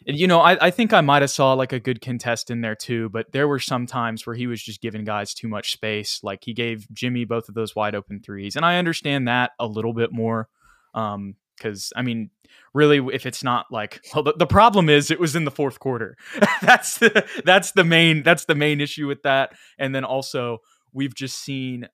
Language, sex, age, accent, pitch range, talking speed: English, male, 20-39, American, 110-135 Hz, 235 wpm